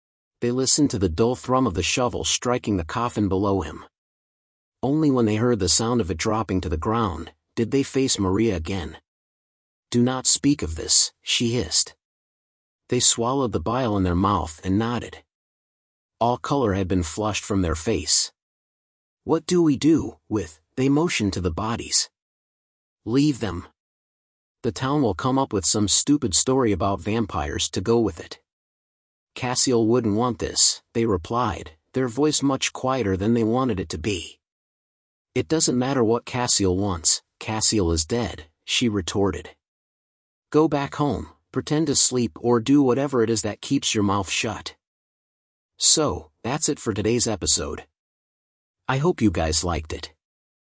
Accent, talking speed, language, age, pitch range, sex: American, 160 wpm, English, 40-59, 95-125 Hz, male